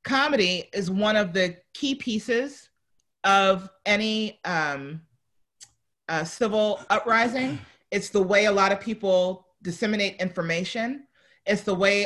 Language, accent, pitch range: English, American, 185-240 Hz